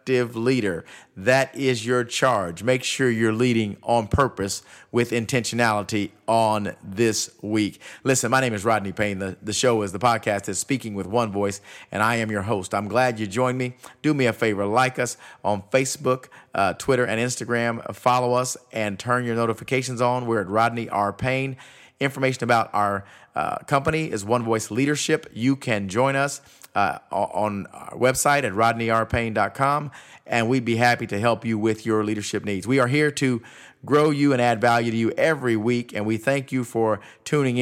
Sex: male